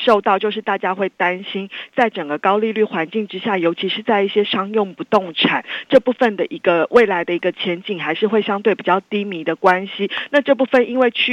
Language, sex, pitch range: Chinese, female, 185-235 Hz